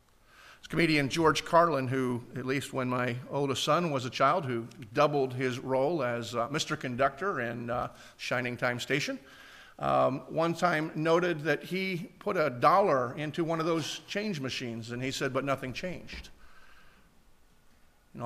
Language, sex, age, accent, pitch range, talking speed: English, male, 50-69, American, 125-155 Hz, 160 wpm